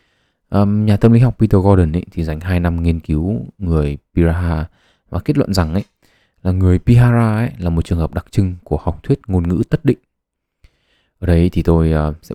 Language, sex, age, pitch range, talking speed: Vietnamese, male, 20-39, 80-105 Hz, 200 wpm